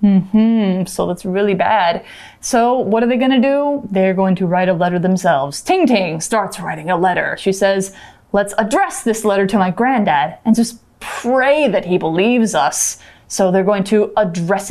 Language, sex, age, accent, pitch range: Chinese, female, 20-39, American, 195-265 Hz